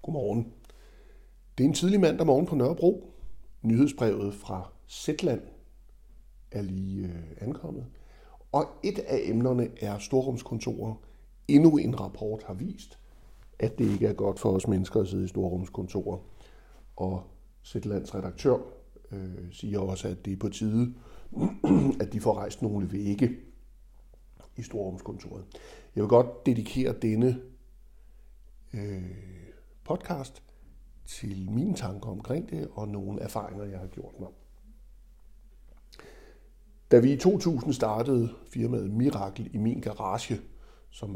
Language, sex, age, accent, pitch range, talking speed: Danish, male, 60-79, native, 95-120 Hz, 130 wpm